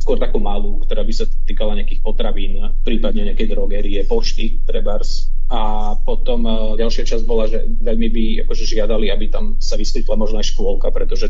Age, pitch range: 30-49, 110-160 Hz